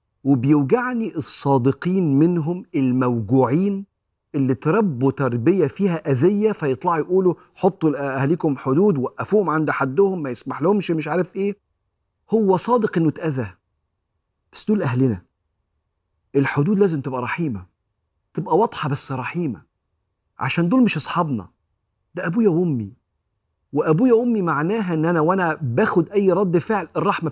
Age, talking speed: 40-59, 125 wpm